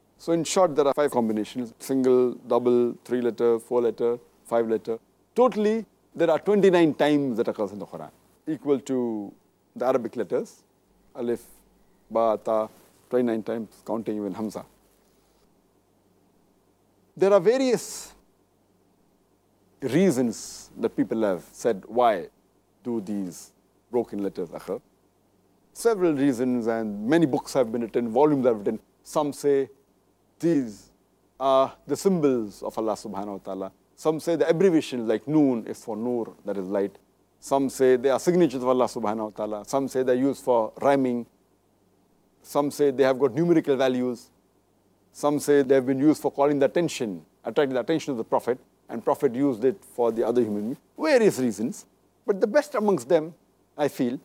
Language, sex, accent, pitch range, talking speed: English, male, Indian, 100-140 Hz, 160 wpm